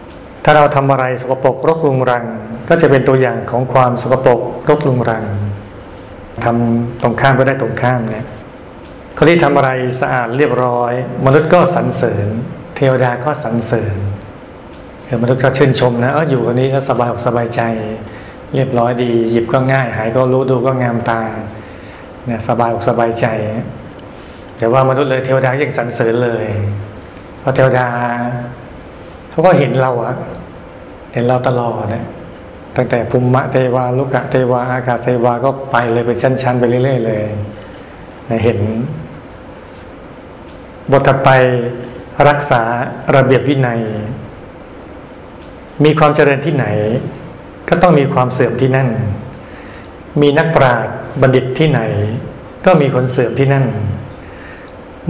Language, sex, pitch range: Thai, male, 115-135 Hz